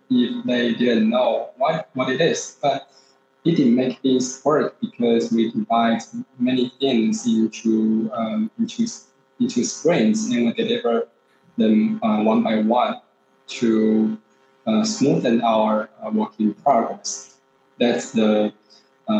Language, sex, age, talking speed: English, male, 20-39, 130 wpm